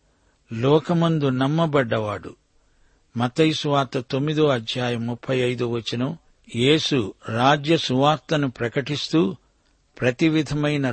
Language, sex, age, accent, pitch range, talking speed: Telugu, male, 50-69, native, 125-150 Hz, 75 wpm